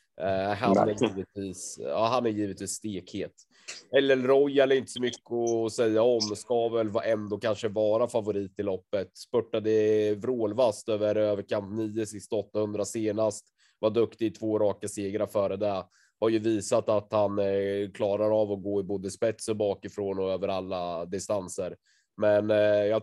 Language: Swedish